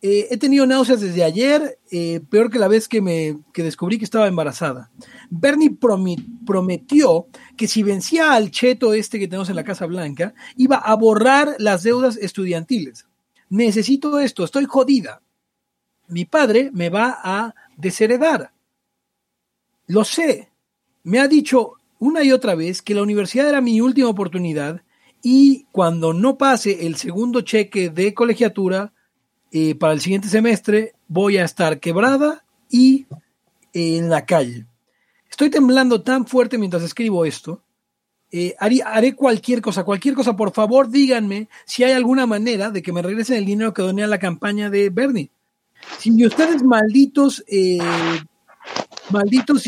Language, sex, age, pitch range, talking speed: English, male, 40-59, 185-250 Hz, 150 wpm